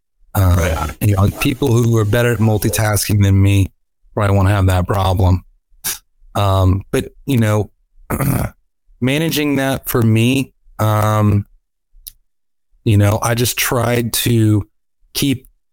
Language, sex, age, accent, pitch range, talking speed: English, male, 30-49, American, 95-115 Hz, 120 wpm